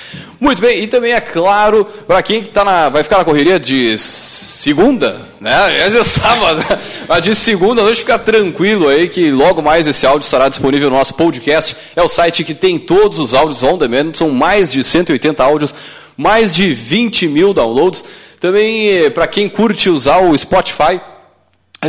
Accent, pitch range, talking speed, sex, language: Brazilian, 155-220 Hz, 180 wpm, male, Portuguese